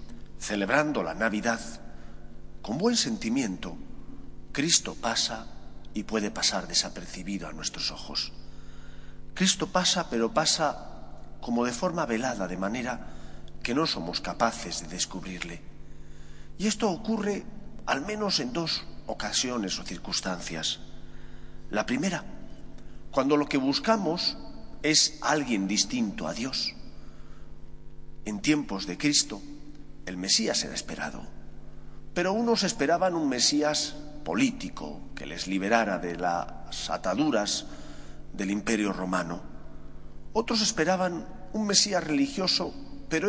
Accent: Spanish